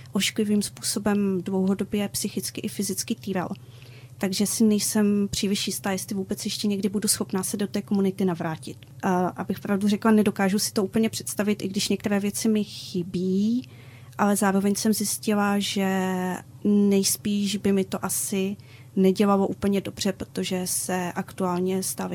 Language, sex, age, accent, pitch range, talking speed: Czech, female, 30-49, native, 190-215 Hz, 145 wpm